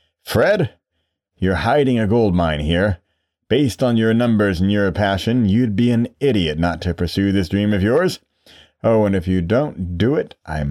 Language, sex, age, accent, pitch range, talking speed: English, male, 30-49, American, 85-110 Hz, 185 wpm